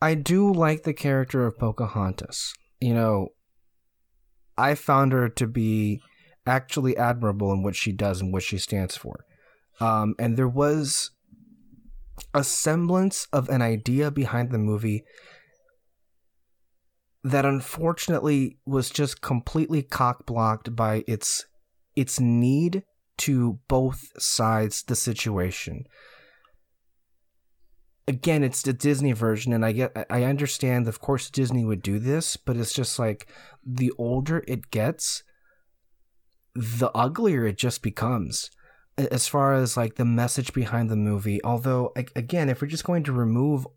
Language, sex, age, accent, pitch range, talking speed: English, male, 30-49, American, 110-145 Hz, 135 wpm